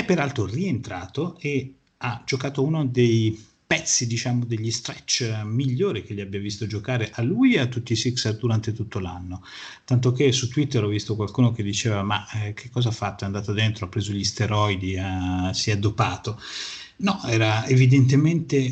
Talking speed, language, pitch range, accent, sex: 175 wpm, Italian, 110-140 Hz, native, male